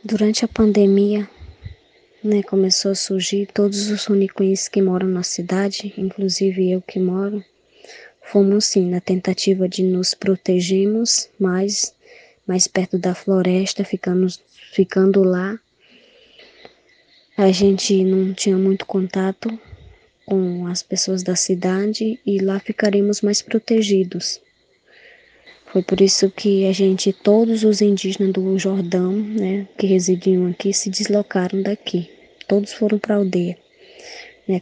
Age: 20-39